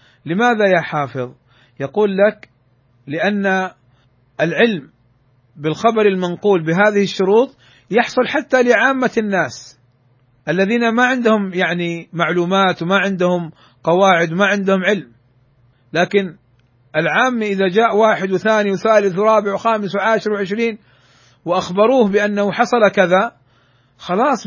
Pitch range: 130-215 Hz